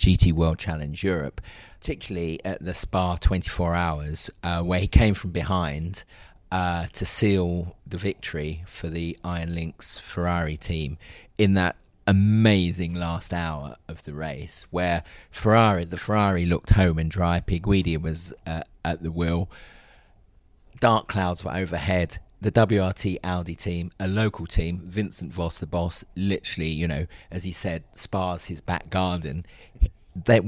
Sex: male